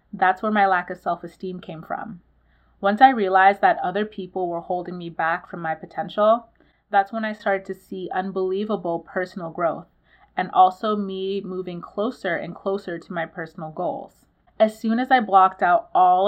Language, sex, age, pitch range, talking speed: English, female, 30-49, 175-205 Hz, 175 wpm